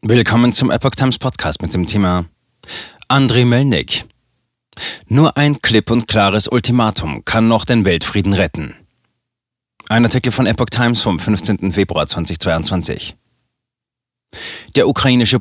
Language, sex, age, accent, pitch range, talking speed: German, male, 30-49, German, 90-115 Hz, 125 wpm